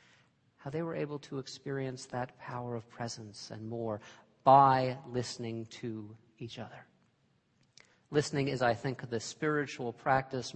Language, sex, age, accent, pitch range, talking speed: English, male, 40-59, American, 120-150 Hz, 135 wpm